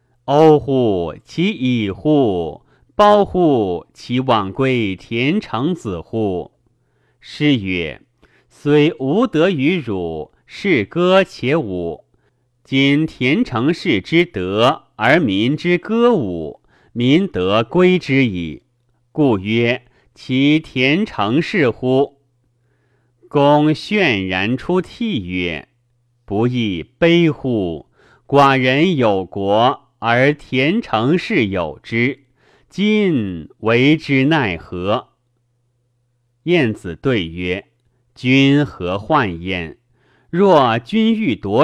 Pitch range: 110-155 Hz